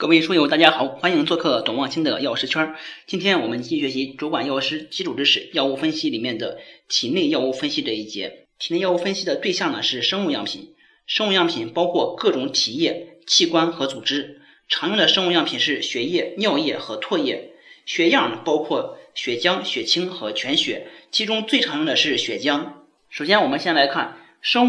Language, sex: Chinese, male